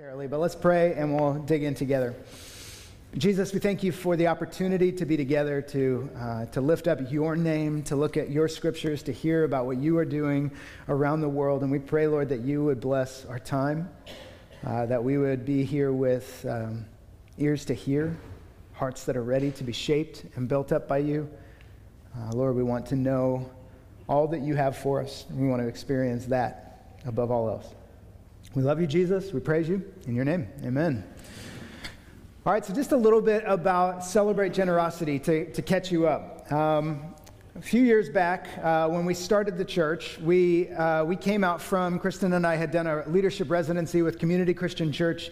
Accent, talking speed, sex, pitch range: American, 195 wpm, male, 130-175 Hz